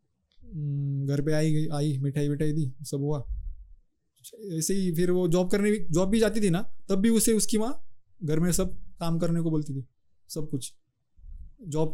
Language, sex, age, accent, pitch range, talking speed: Hindi, male, 20-39, native, 140-180 Hz, 185 wpm